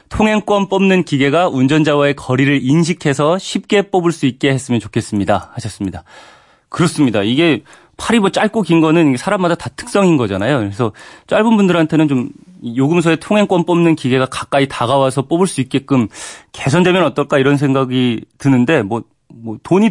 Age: 30-49